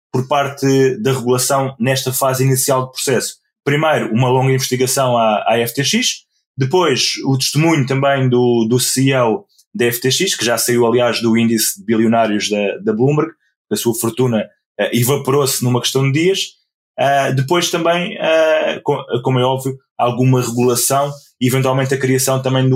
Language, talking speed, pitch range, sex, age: Portuguese, 150 wpm, 125-140 Hz, male, 20-39